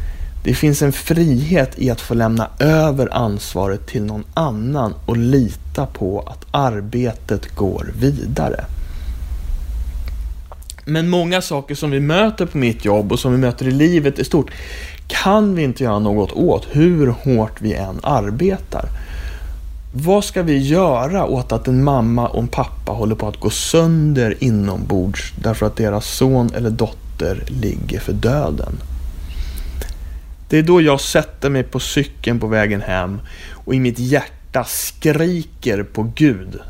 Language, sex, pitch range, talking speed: English, male, 90-145 Hz, 150 wpm